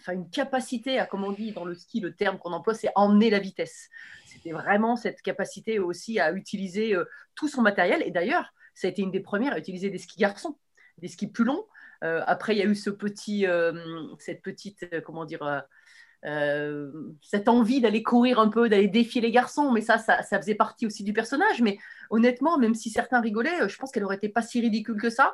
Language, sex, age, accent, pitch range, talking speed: French, female, 30-49, French, 195-250 Hz, 220 wpm